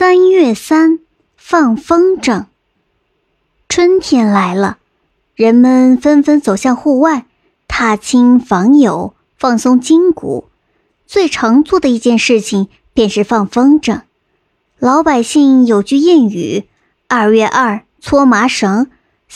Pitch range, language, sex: 225-305 Hz, Chinese, male